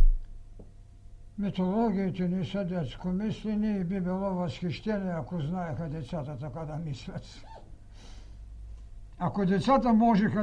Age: 60-79